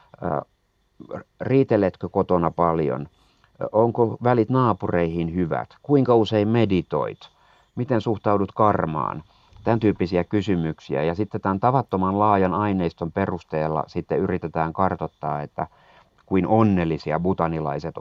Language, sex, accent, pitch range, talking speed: Finnish, male, native, 85-105 Hz, 100 wpm